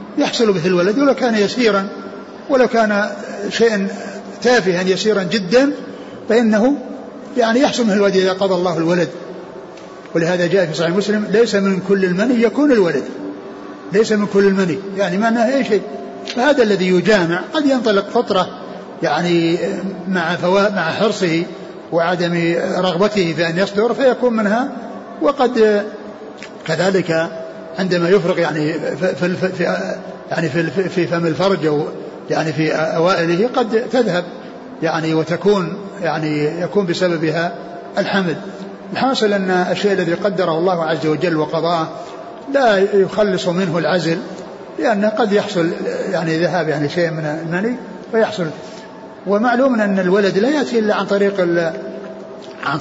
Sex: male